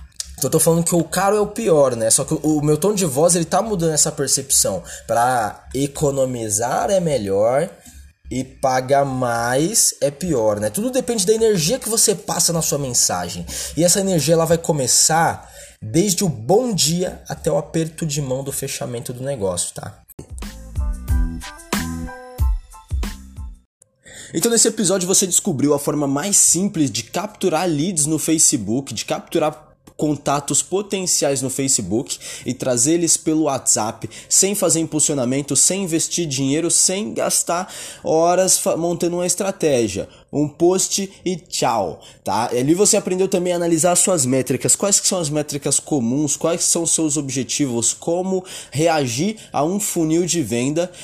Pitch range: 135-180 Hz